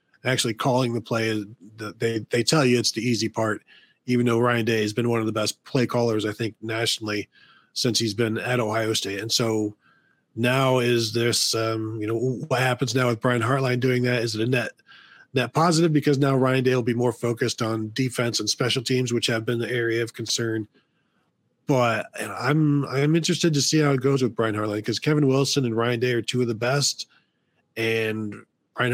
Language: English